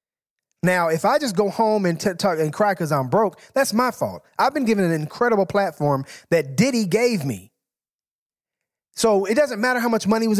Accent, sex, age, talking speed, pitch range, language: American, male, 30-49, 200 wpm, 160-215 Hz, English